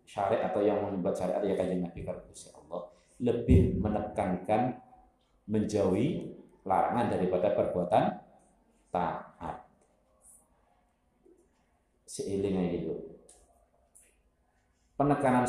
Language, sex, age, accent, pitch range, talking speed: Indonesian, male, 50-69, native, 85-115 Hz, 80 wpm